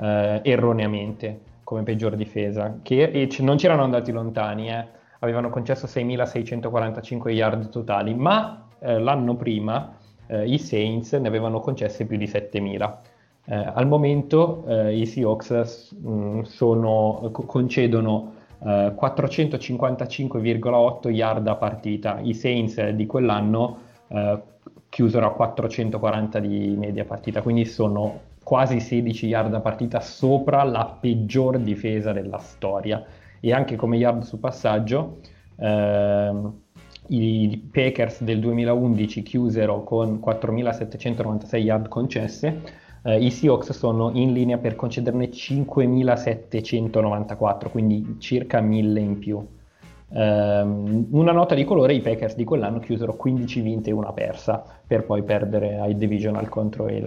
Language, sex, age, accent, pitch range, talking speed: Italian, male, 20-39, native, 105-120 Hz, 125 wpm